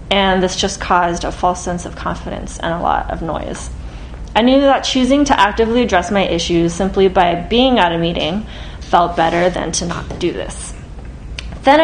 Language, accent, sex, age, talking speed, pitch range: English, American, female, 20-39, 190 wpm, 175-215 Hz